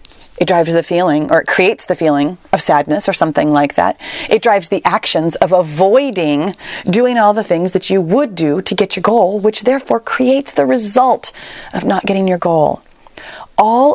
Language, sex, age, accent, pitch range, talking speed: English, female, 30-49, American, 175-225 Hz, 190 wpm